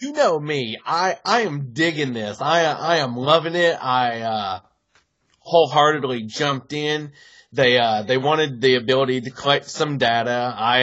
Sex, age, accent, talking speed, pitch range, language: male, 30-49, American, 160 wpm, 125-155 Hz, English